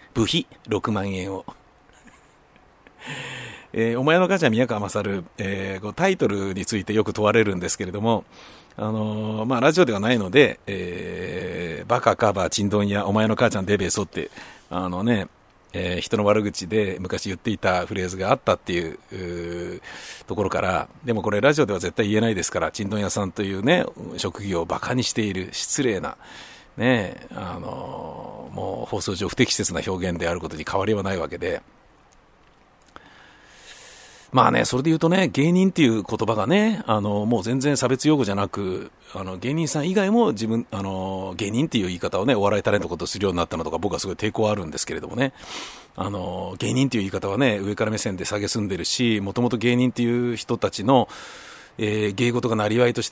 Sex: male